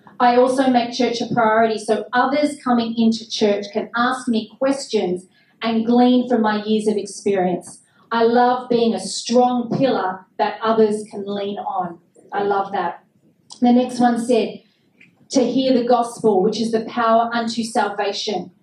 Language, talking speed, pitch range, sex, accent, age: English, 160 wpm, 210-245 Hz, female, Australian, 30-49